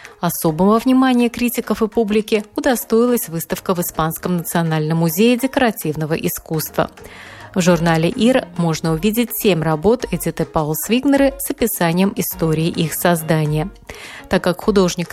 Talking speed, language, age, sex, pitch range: 125 wpm, Russian, 30-49, female, 165-225 Hz